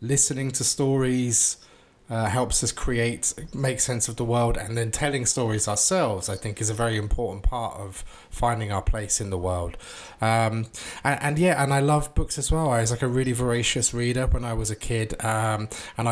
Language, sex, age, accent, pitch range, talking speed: English, male, 20-39, British, 110-130 Hz, 205 wpm